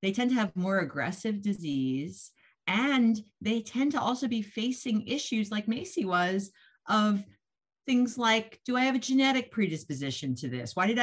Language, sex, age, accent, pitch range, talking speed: English, female, 50-69, American, 140-205 Hz, 170 wpm